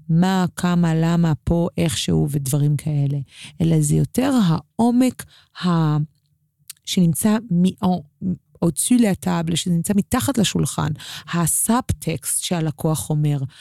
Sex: female